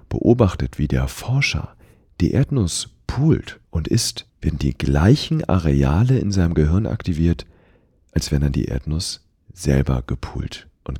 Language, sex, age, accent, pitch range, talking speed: German, male, 40-59, German, 80-120 Hz, 135 wpm